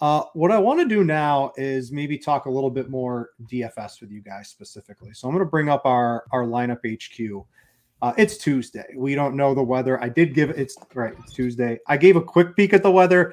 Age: 30-49